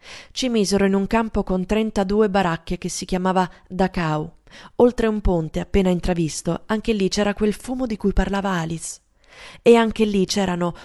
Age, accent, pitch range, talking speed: 20-39, native, 180-215 Hz, 165 wpm